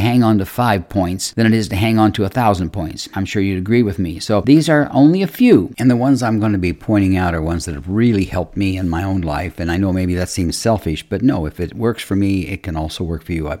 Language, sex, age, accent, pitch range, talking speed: English, male, 60-79, American, 95-130 Hz, 300 wpm